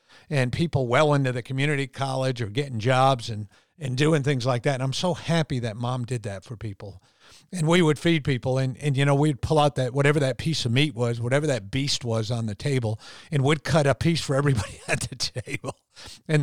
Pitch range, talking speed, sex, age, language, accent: 120-145 Hz, 230 wpm, male, 50-69, English, American